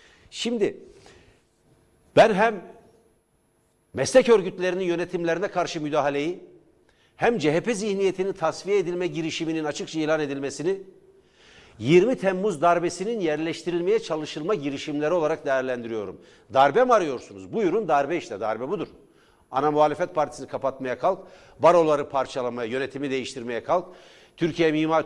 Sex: male